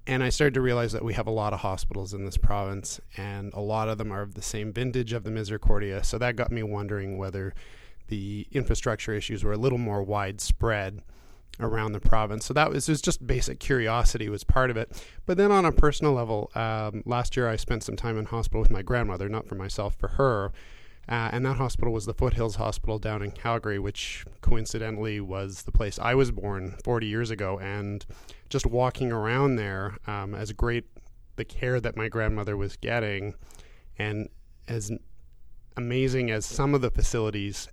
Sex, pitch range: male, 100-120 Hz